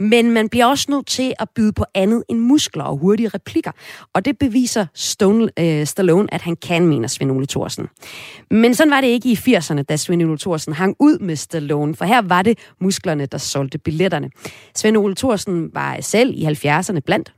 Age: 30-49